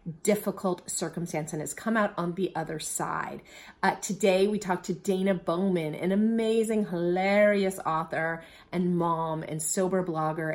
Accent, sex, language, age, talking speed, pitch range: American, female, English, 30-49, 150 wpm, 170-200 Hz